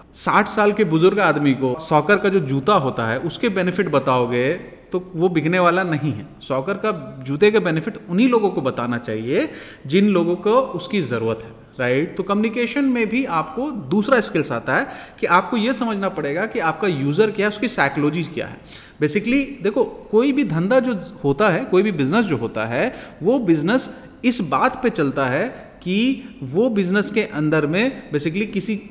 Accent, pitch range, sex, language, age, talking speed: native, 155-240 Hz, male, Hindi, 30-49, 190 wpm